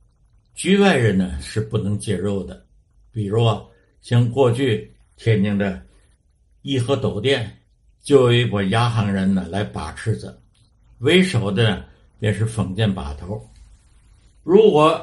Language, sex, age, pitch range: Chinese, male, 60-79, 100-125 Hz